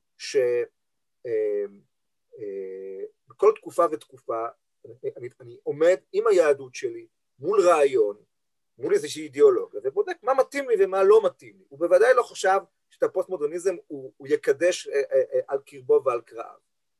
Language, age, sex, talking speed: Hebrew, 40-59, male, 125 wpm